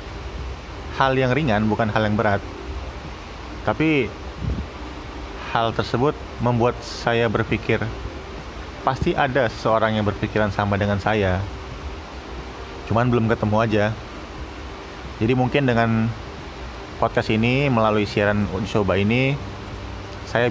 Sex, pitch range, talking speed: male, 90-115 Hz, 100 wpm